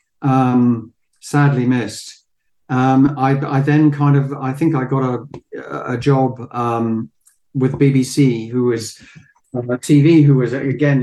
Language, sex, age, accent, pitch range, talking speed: English, male, 50-69, British, 125-140 Hz, 145 wpm